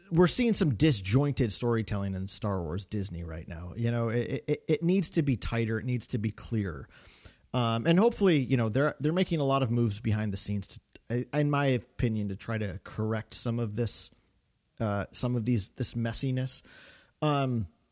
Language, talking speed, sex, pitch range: English, 195 wpm, male, 110-140 Hz